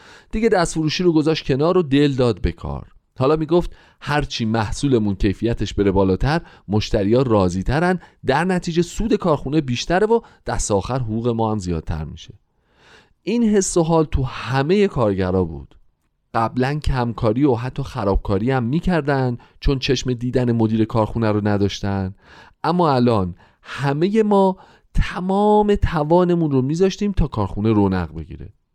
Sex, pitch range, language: male, 105-170 Hz, Persian